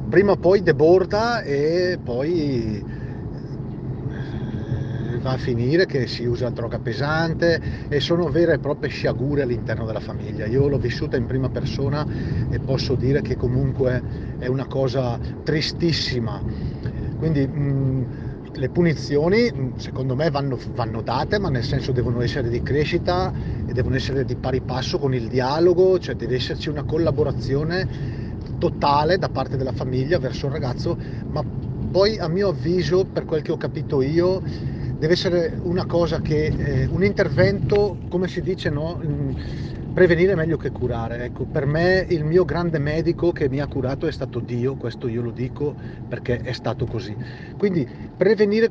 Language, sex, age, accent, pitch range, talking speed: Italian, male, 40-59, native, 125-170 Hz, 155 wpm